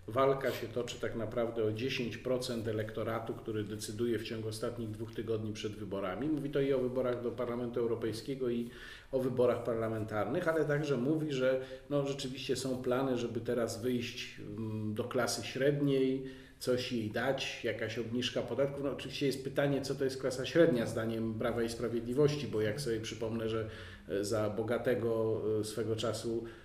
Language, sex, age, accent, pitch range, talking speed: Polish, male, 40-59, native, 115-135 Hz, 160 wpm